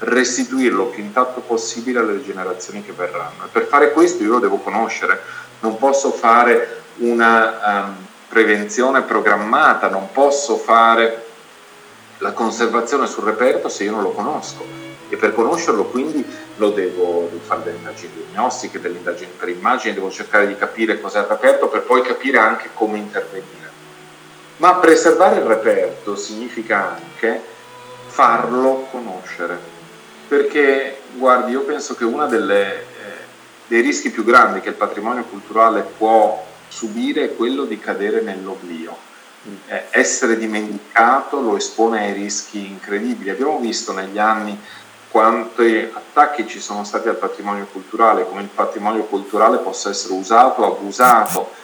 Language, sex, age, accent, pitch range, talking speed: Italian, male, 40-59, native, 105-140 Hz, 140 wpm